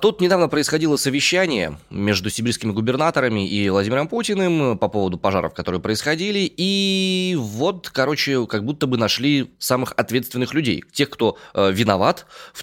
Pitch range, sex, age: 105-145 Hz, male, 20-39